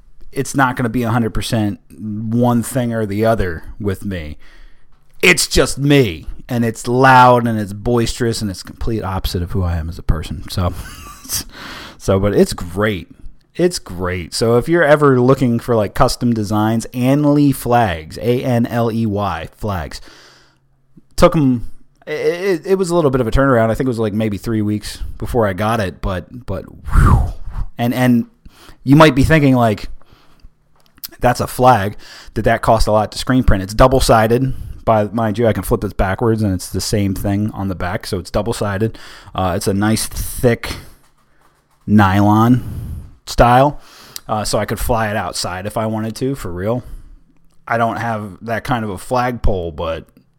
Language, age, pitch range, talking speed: English, 30-49, 100-125 Hz, 180 wpm